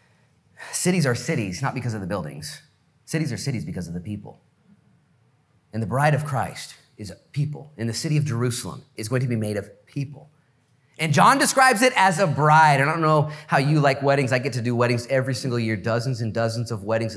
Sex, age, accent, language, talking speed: male, 30-49, American, English, 220 wpm